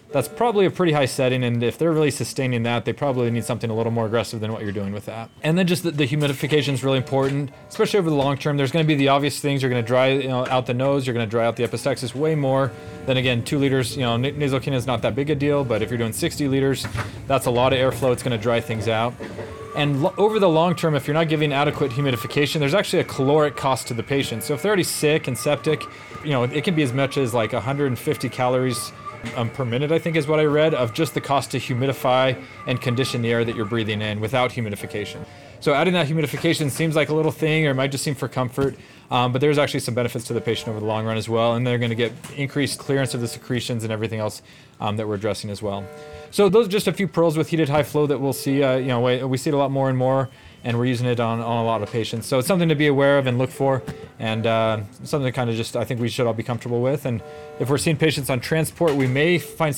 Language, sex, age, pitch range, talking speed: English, male, 30-49, 120-145 Hz, 275 wpm